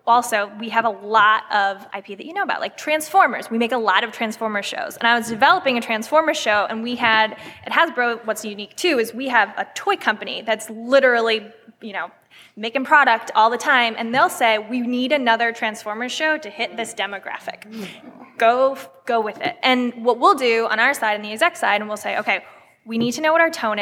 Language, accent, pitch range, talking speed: English, American, 220-260 Hz, 220 wpm